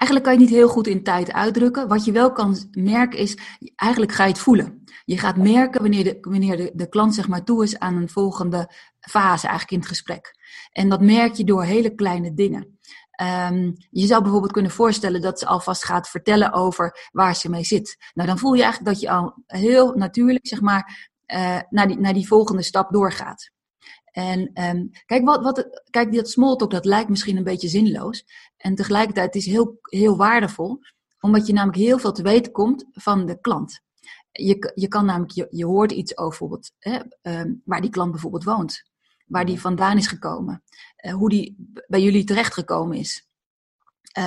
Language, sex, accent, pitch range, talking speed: English, female, Dutch, 180-230 Hz, 195 wpm